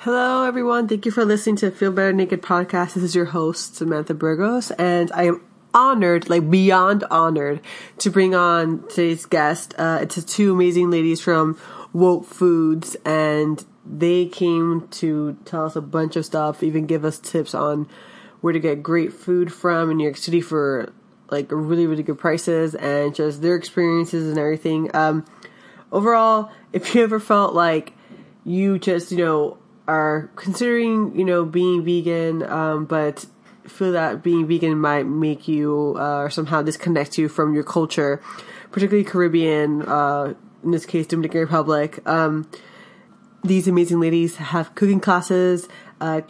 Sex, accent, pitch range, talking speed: female, American, 155-185 Hz, 160 wpm